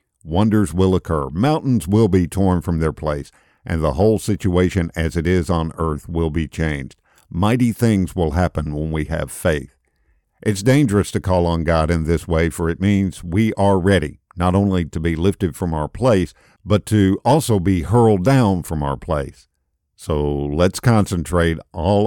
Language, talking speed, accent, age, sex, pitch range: English, 180 wpm, American, 50-69, male, 80-105 Hz